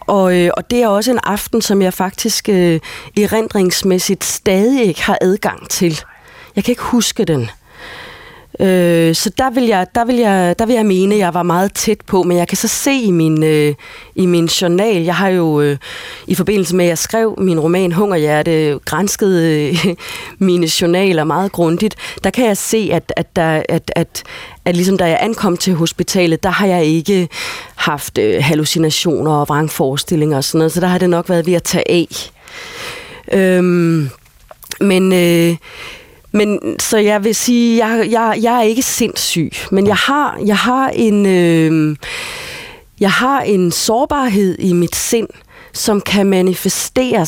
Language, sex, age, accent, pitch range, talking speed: Danish, female, 30-49, native, 170-215 Hz, 170 wpm